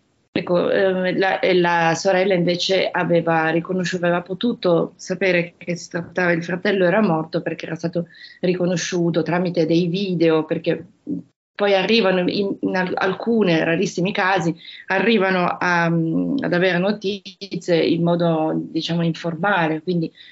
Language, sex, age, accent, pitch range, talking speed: Italian, female, 30-49, native, 165-195 Hz, 125 wpm